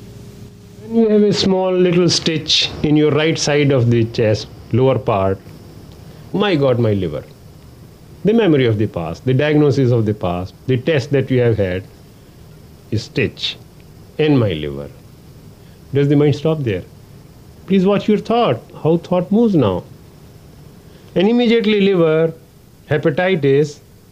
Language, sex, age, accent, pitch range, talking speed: English, male, 40-59, Indian, 120-185 Hz, 140 wpm